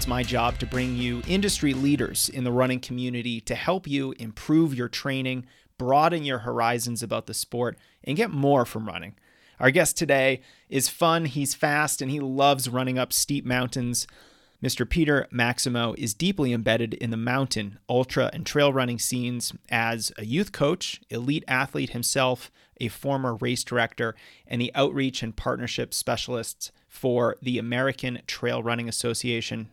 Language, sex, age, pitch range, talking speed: English, male, 30-49, 120-135 Hz, 160 wpm